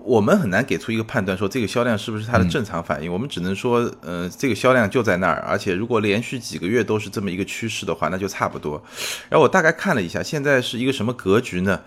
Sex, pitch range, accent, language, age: male, 95-125 Hz, native, Chinese, 20-39